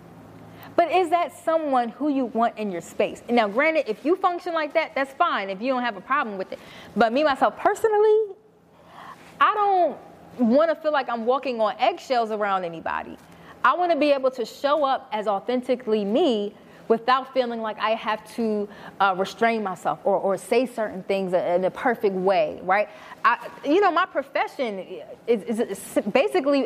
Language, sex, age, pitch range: English, female, 20-39, 215-285 Hz